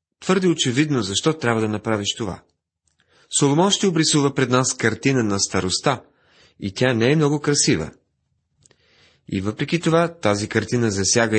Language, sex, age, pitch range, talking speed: Bulgarian, male, 30-49, 105-140 Hz, 140 wpm